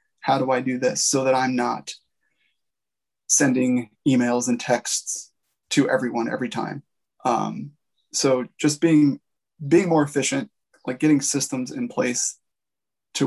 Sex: male